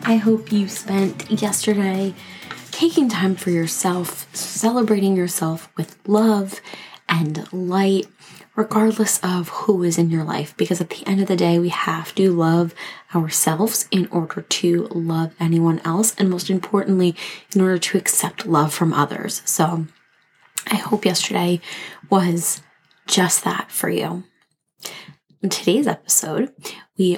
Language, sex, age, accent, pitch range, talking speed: English, female, 20-39, American, 165-205 Hz, 140 wpm